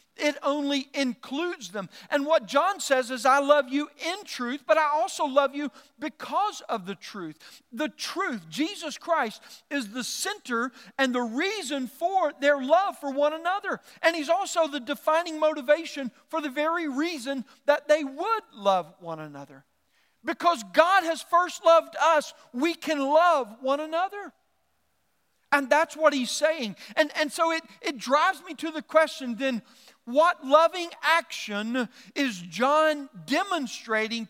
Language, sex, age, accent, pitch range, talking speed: English, male, 50-69, American, 220-315 Hz, 155 wpm